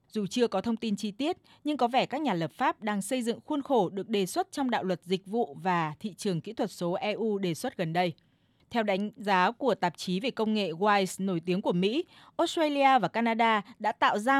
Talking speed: 240 wpm